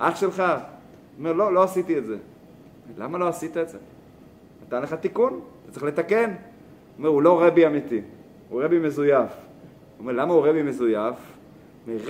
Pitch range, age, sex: 145-185 Hz, 30-49, male